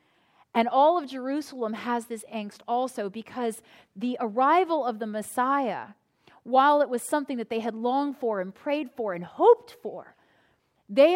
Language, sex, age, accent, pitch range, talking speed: English, female, 30-49, American, 220-290 Hz, 160 wpm